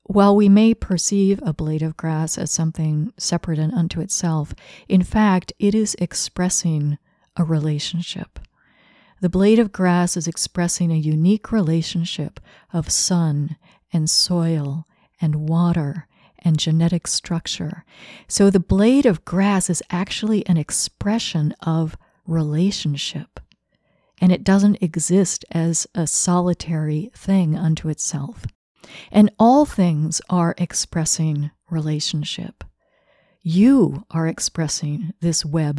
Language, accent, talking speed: English, American, 120 wpm